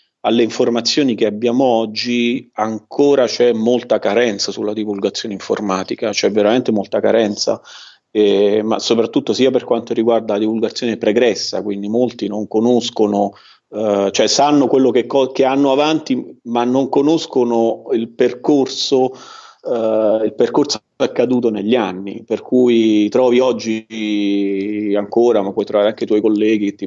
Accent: native